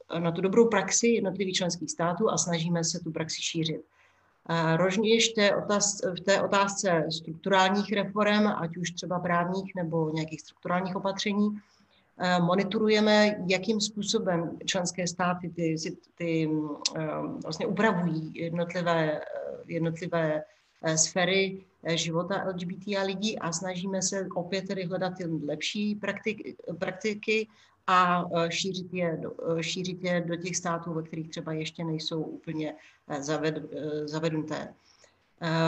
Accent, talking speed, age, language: native, 115 wpm, 40-59, Czech